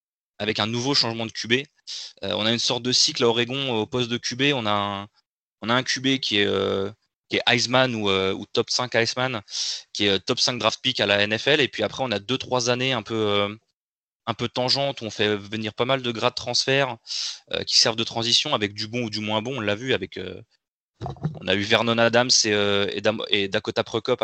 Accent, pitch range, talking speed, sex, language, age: French, 105-125 Hz, 250 wpm, male, French, 20-39